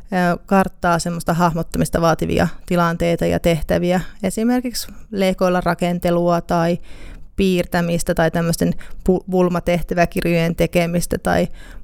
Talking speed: 85 wpm